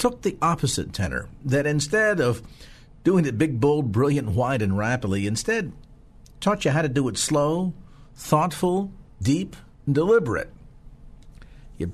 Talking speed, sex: 140 wpm, male